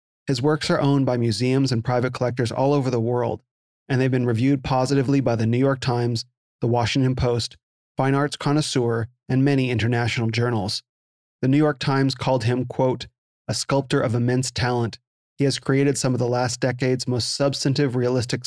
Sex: male